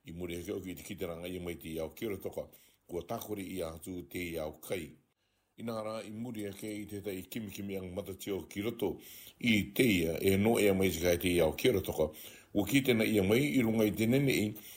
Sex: male